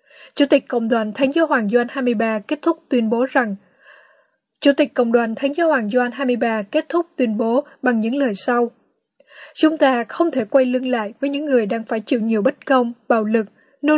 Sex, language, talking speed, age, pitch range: female, Vietnamese, 210 wpm, 10-29, 230-275 Hz